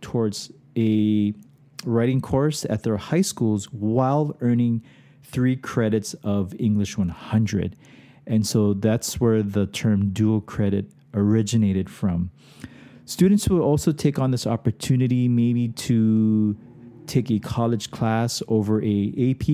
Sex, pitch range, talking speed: male, 105-130 Hz, 125 wpm